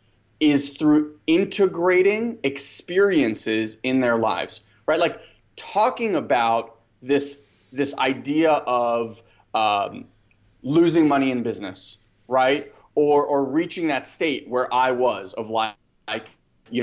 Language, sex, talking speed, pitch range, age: English, male, 120 wpm, 115-150 Hz, 20-39